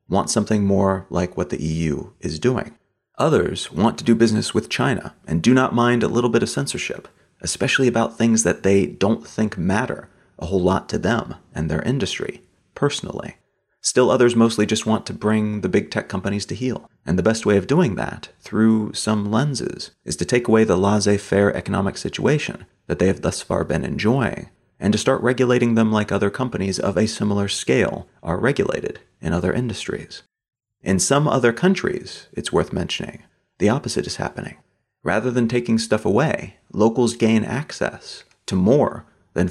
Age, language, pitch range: 30-49, English, 100-120 Hz